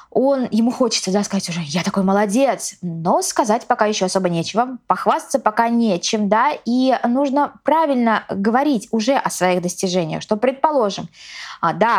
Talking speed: 145 wpm